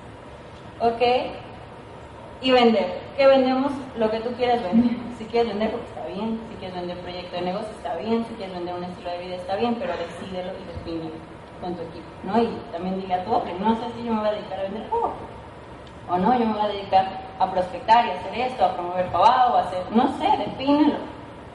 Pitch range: 205-255 Hz